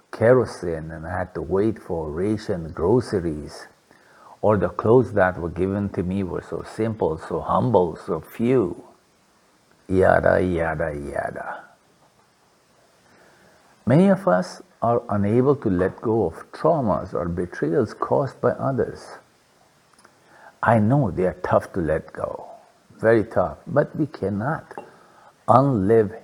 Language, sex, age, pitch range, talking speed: English, male, 60-79, 90-125 Hz, 130 wpm